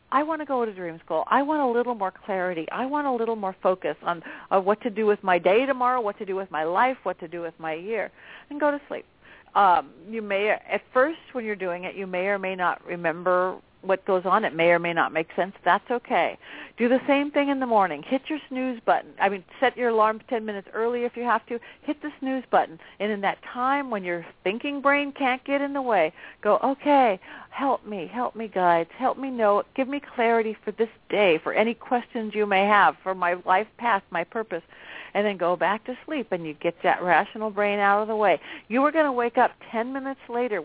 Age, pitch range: 50-69, 190-255 Hz